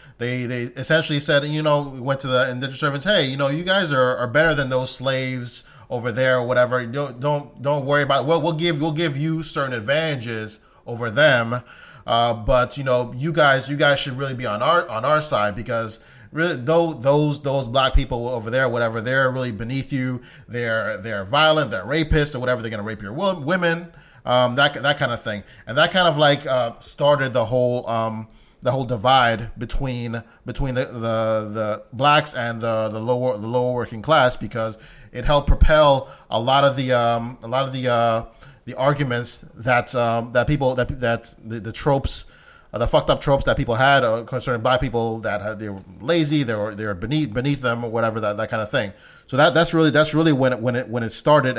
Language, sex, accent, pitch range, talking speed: English, male, American, 115-145 Hz, 220 wpm